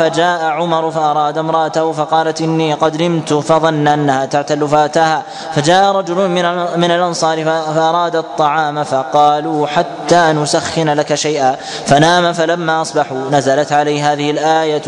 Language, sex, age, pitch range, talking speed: Arabic, male, 20-39, 150-165 Hz, 120 wpm